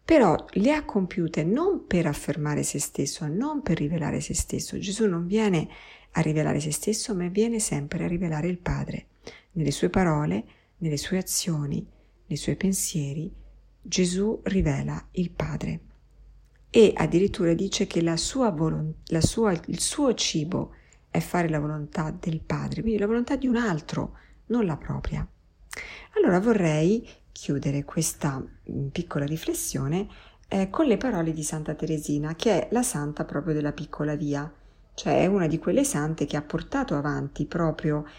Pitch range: 150-195 Hz